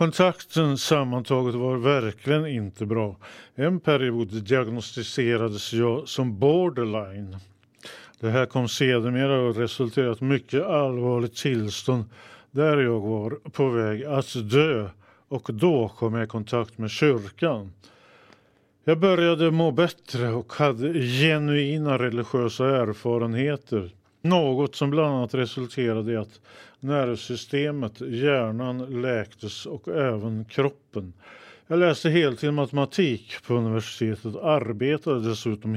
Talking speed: 110 wpm